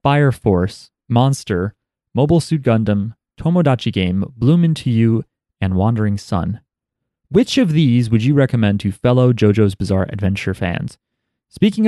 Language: English